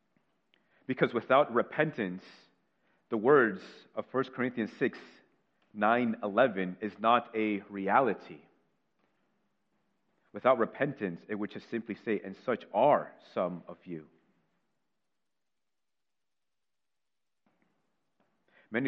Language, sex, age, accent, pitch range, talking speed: English, male, 30-49, American, 100-115 Hz, 90 wpm